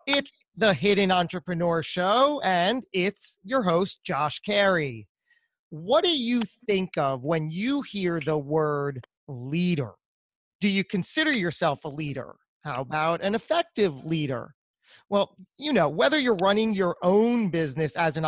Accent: American